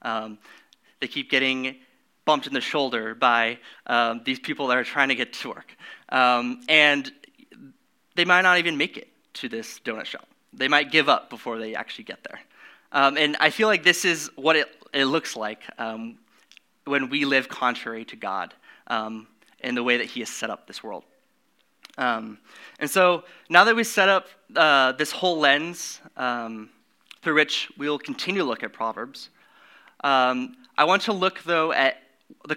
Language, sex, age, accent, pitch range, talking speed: English, male, 20-39, American, 125-175 Hz, 180 wpm